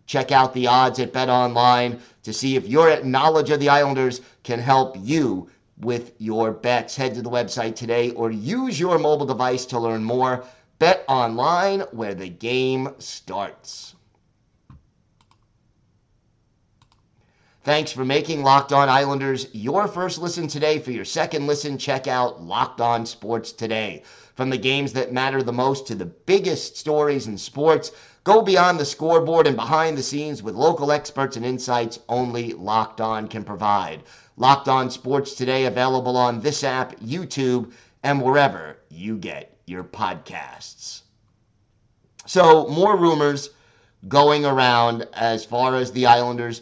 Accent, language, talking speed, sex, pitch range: American, English, 150 wpm, male, 115-140 Hz